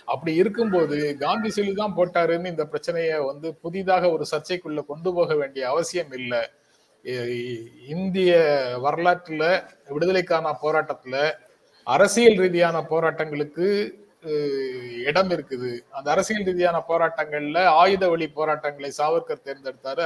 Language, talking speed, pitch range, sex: Tamil, 105 wpm, 135-180 Hz, male